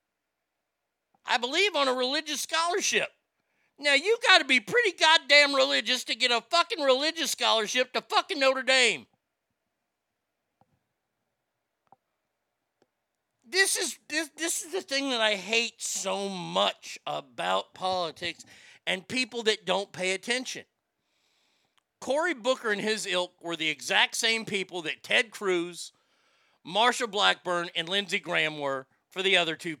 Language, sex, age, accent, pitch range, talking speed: English, male, 50-69, American, 170-255 Hz, 135 wpm